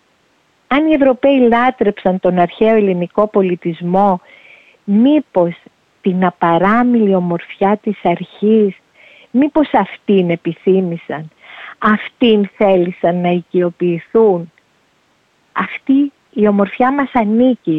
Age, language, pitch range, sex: 50-69, Greek, 170-220 Hz, female